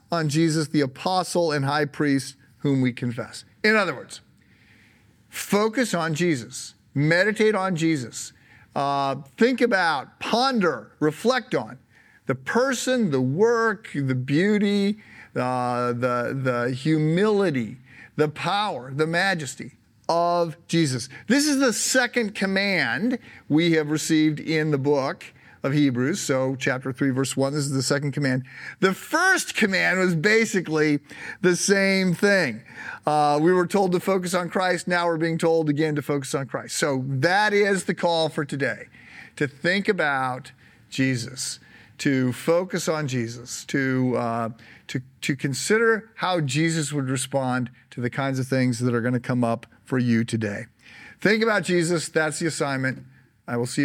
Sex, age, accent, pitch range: male, 50-69, American, 130-180 Hz